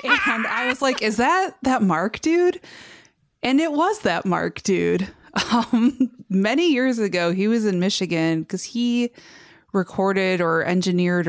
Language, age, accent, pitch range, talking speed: English, 20-39, American, 170-215 Hz, 150 wpm